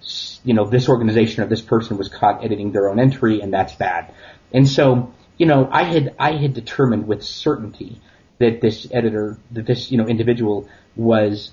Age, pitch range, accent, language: 30-49, 105-125 Hz, American, English